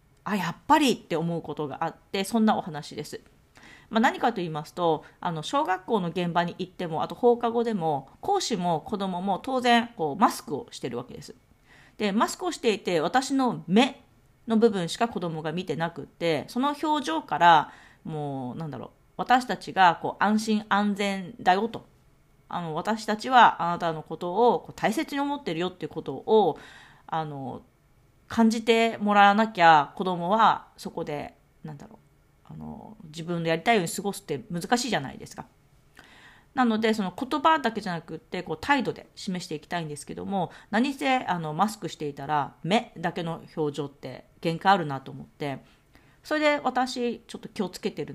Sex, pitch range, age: female, 155-230 Hz, 40-59